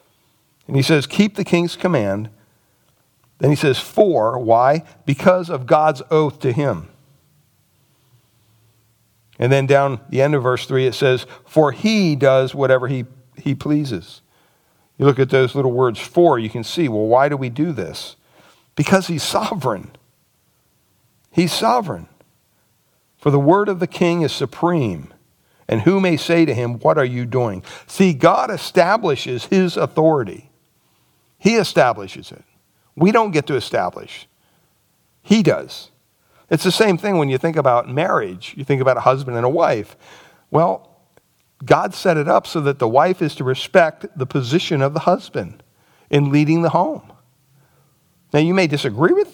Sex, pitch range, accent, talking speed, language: male, 130-170 Hz, American, 160 wpm, English